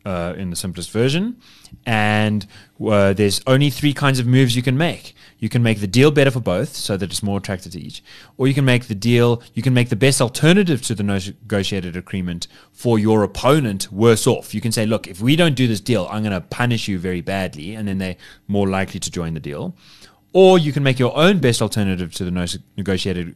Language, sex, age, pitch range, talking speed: English, male, 20-39, 100-125 Hz, 230 wpm